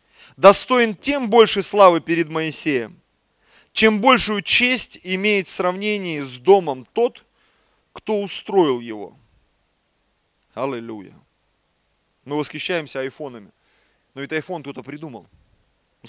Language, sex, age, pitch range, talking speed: Russian, male, 30-49, 130-175 Hz, 105 wpm